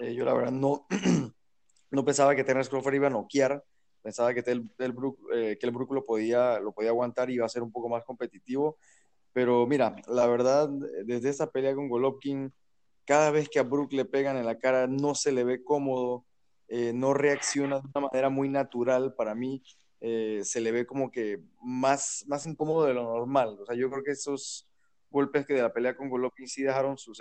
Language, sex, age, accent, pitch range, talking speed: Spanish, male, 20-39, Mexican, 120-135 Hz, 215 wpm